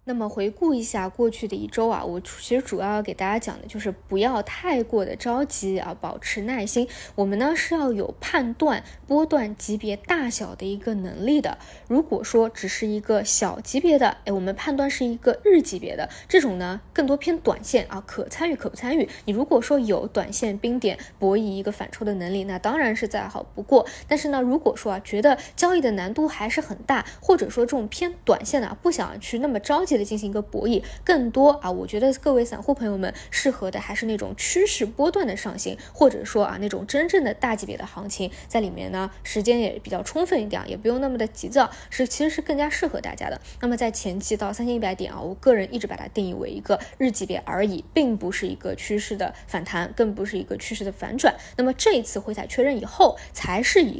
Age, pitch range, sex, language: 20-39, 200-275 Hz, female, Chinese